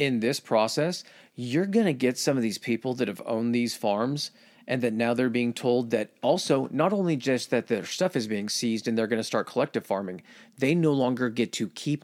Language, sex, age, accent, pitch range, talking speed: English, male, 40-59, American, 110-145 Hz, 230 wpm